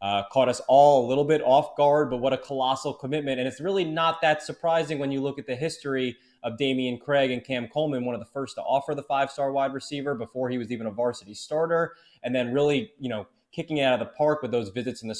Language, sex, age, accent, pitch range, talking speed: English, male, 20-39, American, 120-140 Hz, 255 wpm